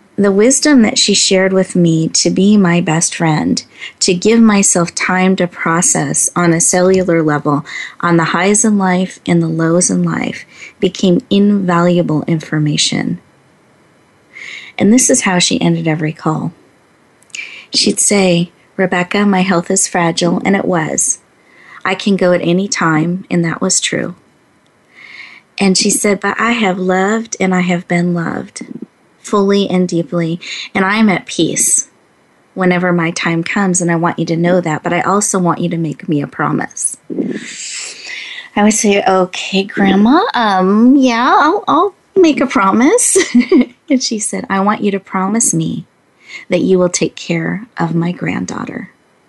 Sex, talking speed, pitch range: female, 160 wpm, 170-205 Hz